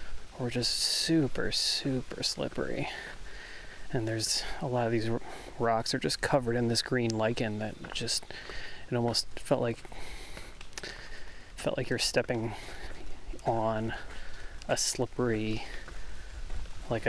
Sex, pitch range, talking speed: male, 110-125 Hz, 120 wpm